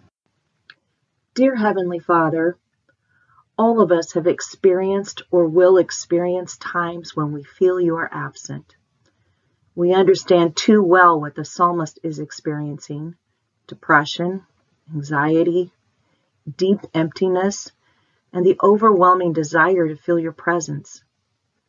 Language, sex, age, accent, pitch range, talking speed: English, female, 40-59, American, 145-190 Hz, 110 wpm